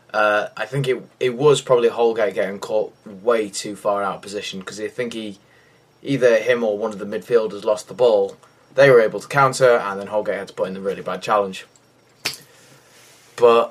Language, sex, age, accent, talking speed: English, male, 20-39, British, 205 wpm